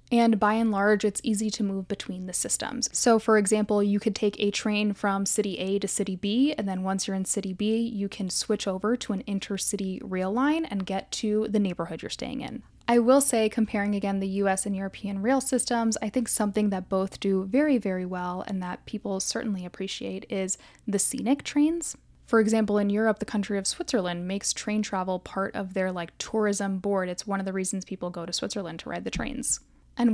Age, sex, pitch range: 10-29, female, 190-225 Hz